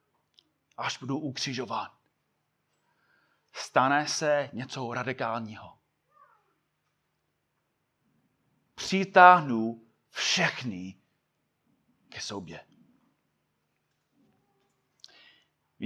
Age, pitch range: 30-49, 140-205 Hz